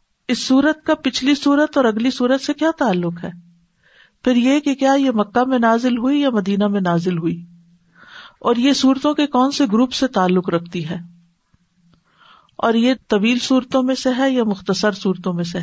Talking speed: 190 wpm